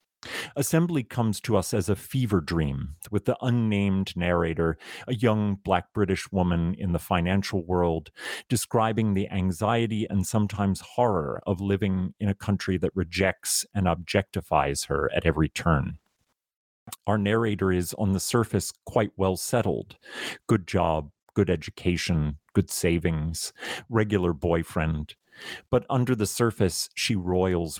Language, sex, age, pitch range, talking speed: English, male, 40-59, 85-105 Hz, 135 wpm